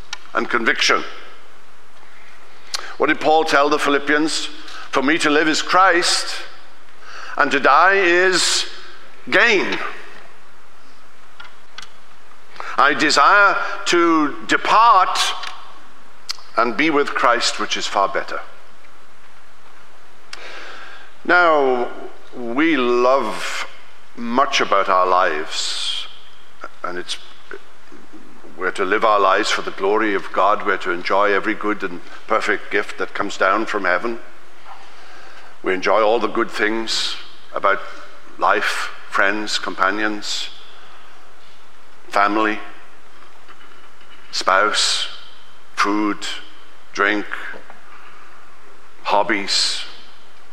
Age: 60-79